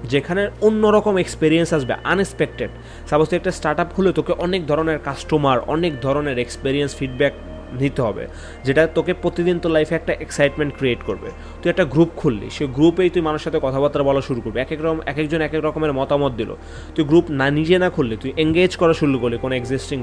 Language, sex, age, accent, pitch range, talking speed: Bengali, male, 30-49, native, 130-160 Hz, 200 wpm